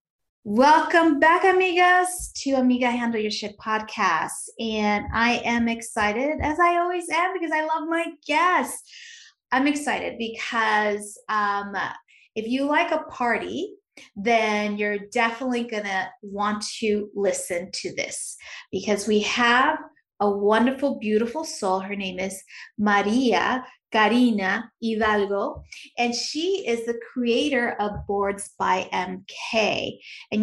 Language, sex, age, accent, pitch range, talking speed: English, female, 30-49, American, 205-260 Hz, 125 wpm